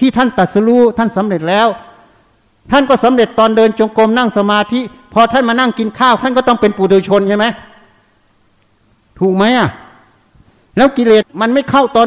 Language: Thai